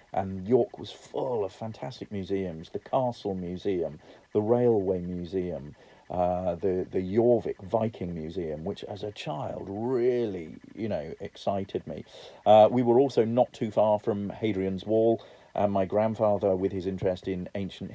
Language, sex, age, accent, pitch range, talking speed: English, male, 40-59, British, 95-125 Hz, 155 wpm